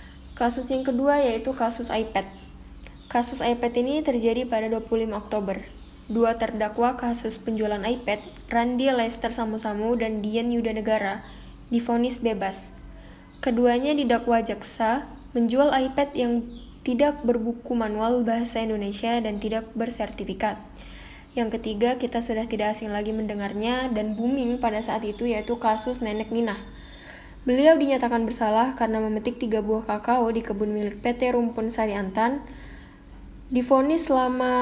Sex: female